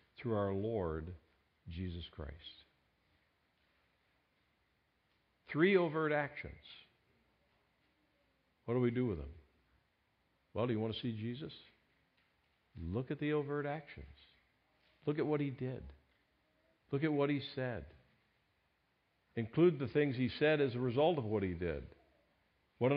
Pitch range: 90-140 Hz